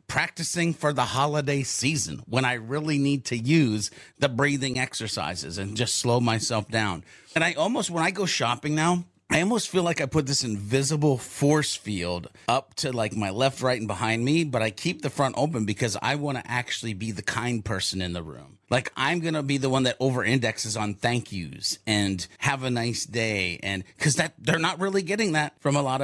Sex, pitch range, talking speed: male, 110-150 Hz, 215 wpm